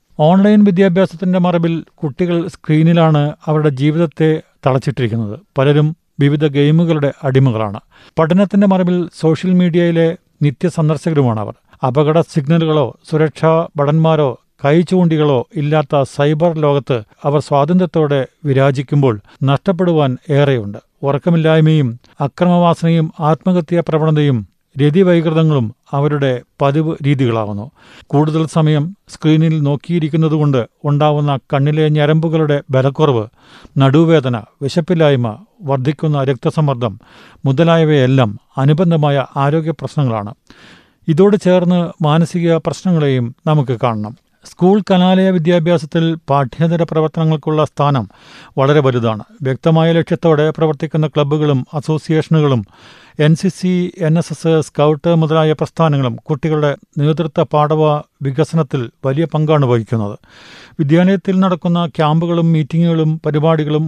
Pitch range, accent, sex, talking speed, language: 140-165 Hz, native, male, 85 wpm, Malayalam